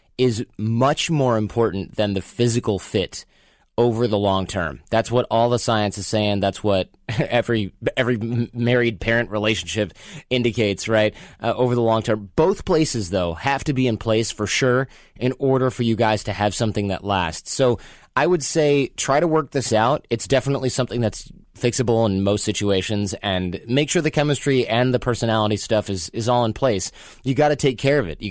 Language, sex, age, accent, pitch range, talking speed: English, male, 30-49, American, 100-125 Hz, 195 wpm